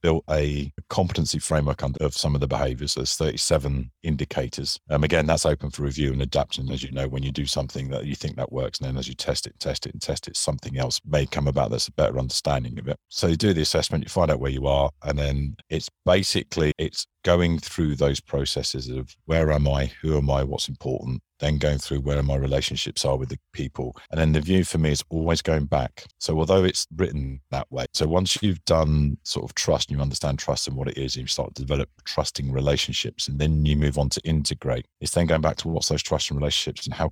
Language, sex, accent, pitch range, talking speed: English, male, British, 70-80 Hz, 240 wpm